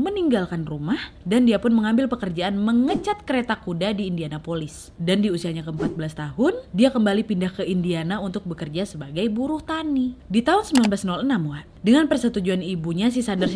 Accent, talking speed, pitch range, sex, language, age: native, 160 wpm, 185-255 Hz, female, Indonesian, 20-39